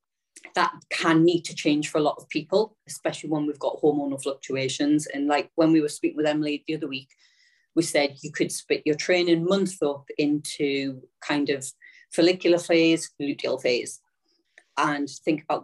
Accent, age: British, 40-59